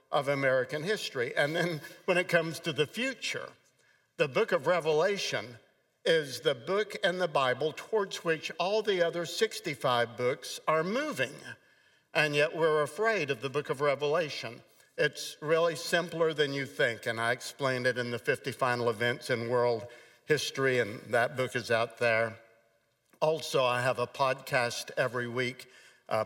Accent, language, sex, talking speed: American, English, male, 160 wpm